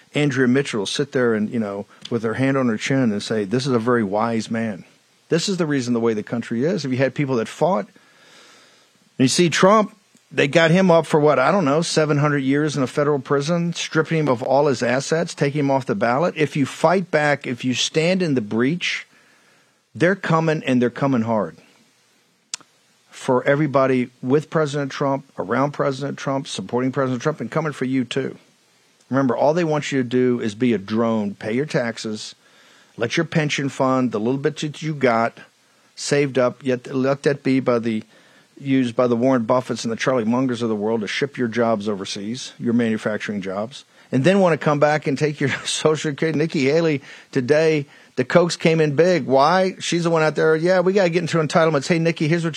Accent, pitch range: American, 125-155 Hz